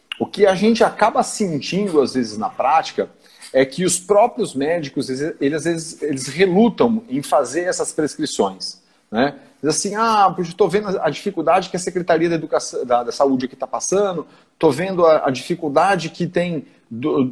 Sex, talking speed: male, 175 wpm